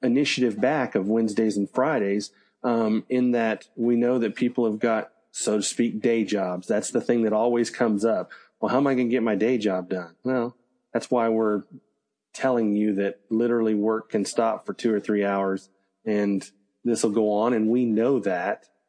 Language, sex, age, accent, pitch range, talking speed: English, male, 40-59, American, 105-115 Hz, 200 wpm